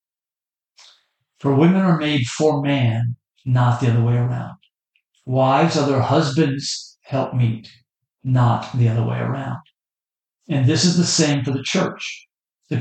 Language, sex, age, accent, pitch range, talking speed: English, male, 50-69, American, 120-150 Hz, 140 wpm